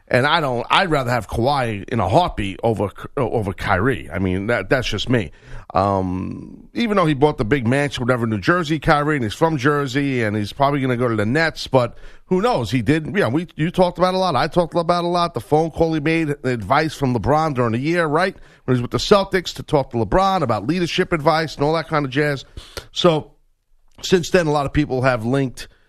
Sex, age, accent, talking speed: male, 40-59, American, 235 wpm